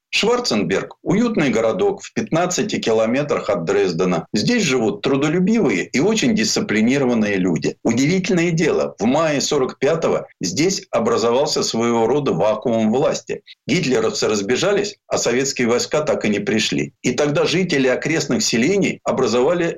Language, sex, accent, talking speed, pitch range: Russian, male, native, 125 wpm, 125-190 Hz